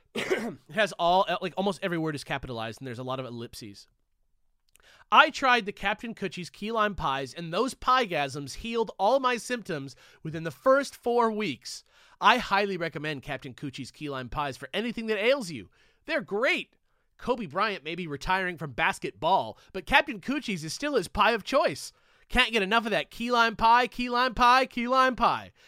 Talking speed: 185 wpm